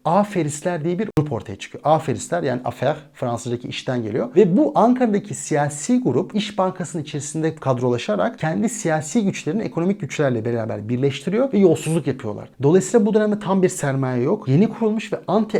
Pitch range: 135-185 Hz